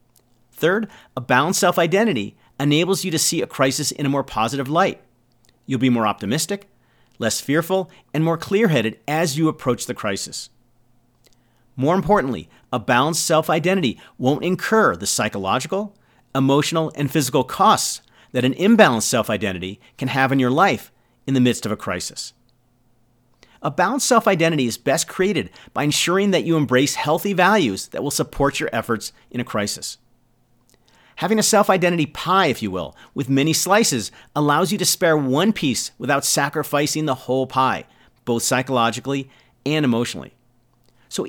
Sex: male